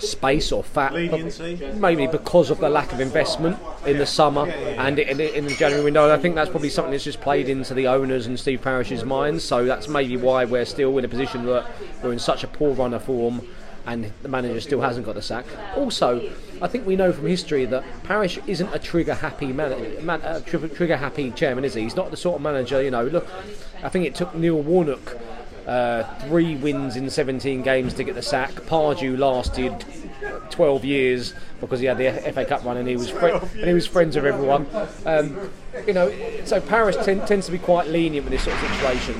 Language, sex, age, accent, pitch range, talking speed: English, male, 30-49, British, 130-170 Hz, 205 wpm